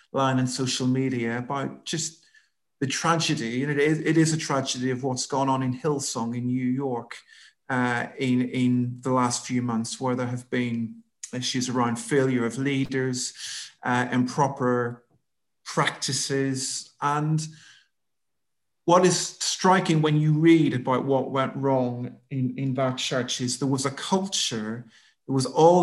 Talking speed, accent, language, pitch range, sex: 150 wpm, British, English, 125-145 Hz, male